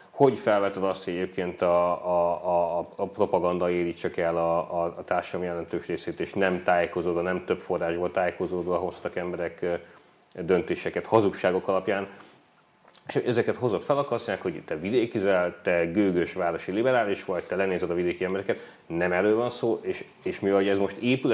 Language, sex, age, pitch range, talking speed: Hungarian, male, 30-49, 85-100 Hz, 160 wpm